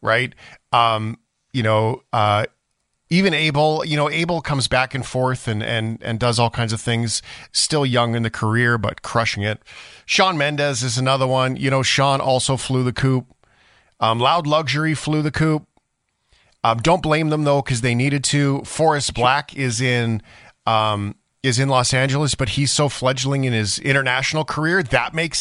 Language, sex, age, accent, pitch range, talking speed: English, male, 40-59, American, 115-145 Hz, 180 wpm